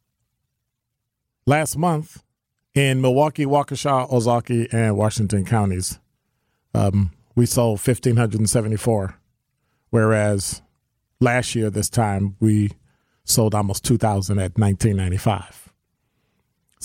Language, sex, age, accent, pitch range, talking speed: English, male, 40-59, American, 110-135 Hz, 85 wpm